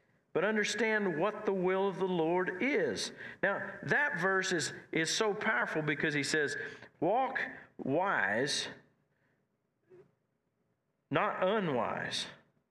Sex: male